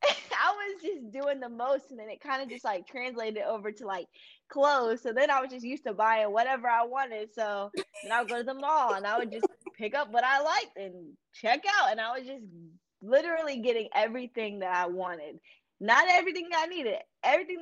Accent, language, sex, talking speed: American, English, female, 220 wpm